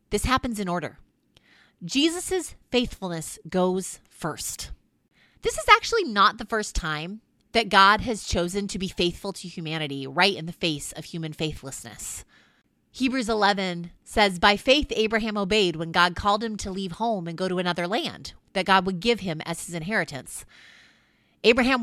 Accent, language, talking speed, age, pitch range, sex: American, English, 160 wpm, 30-49, 175-230 Hz, female